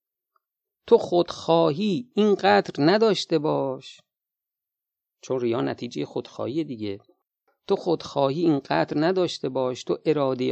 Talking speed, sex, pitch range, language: 110 wpm, male, 115-165 Hz, Persian